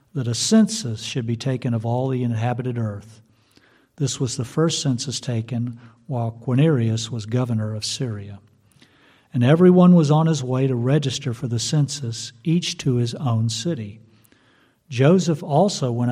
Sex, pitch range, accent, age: male, 115-135 Hz, American, 50-69